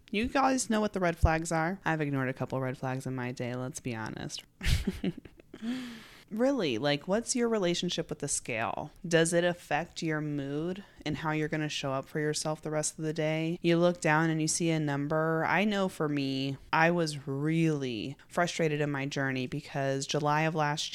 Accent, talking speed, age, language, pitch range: American, 200 wpm, 30-49, English, 140-165 Hz